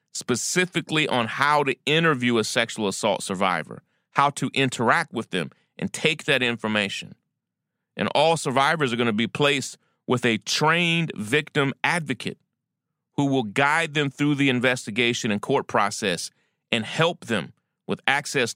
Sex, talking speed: male, 150 wpm